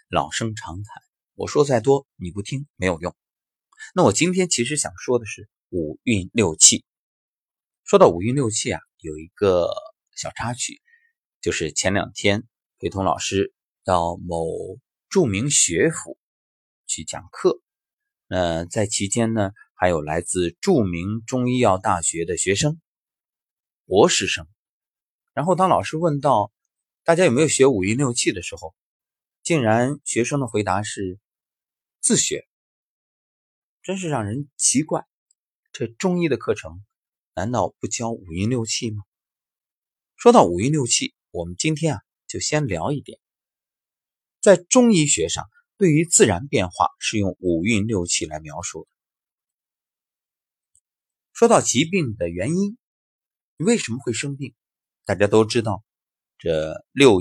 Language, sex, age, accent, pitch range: Chinese, male, 30-49, native, 95-150 Hz